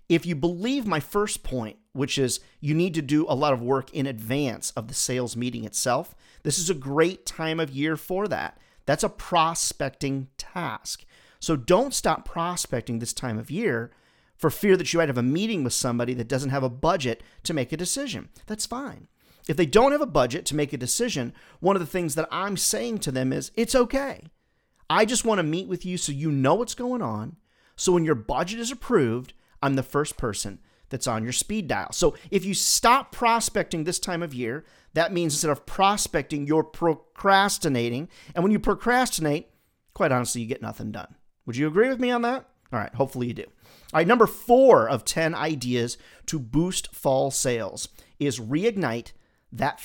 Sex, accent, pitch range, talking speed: male, American, 130-195 Hz, 200 wpm